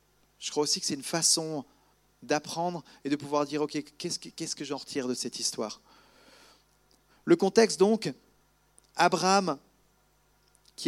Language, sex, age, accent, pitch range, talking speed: French, male, 40-59, French, 135-180 Hz, 145 wpm